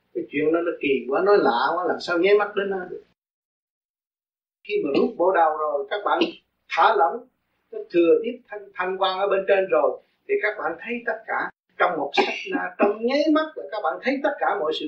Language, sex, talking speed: Vietnamese, male, 215 wpm